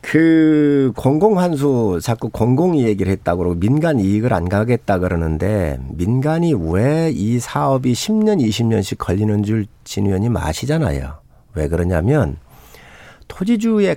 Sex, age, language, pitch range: male, 50-69, Korean, 95-145 Hz